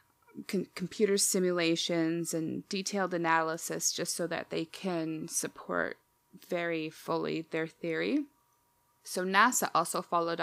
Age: 20-39